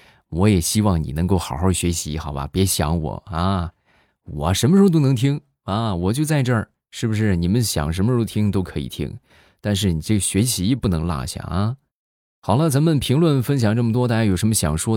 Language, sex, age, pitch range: Chinese, male, 20-39, 80-110 Hz